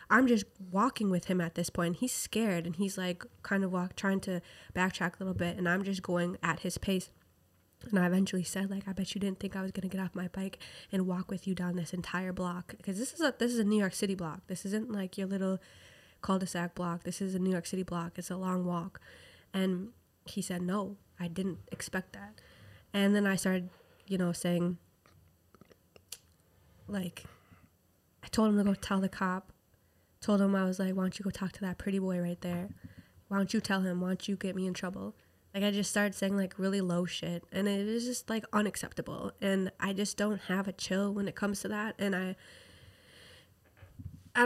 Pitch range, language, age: 175-195 Hz, English, 20-39